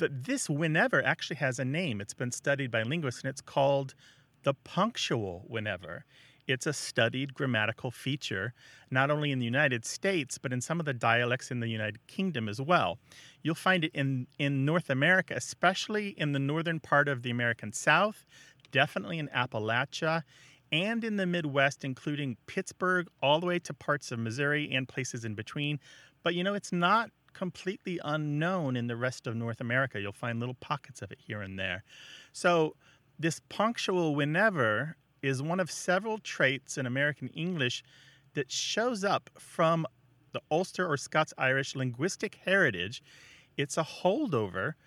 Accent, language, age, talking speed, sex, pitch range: American, English, 40-59, 165 wpm, male, 130-170 Hz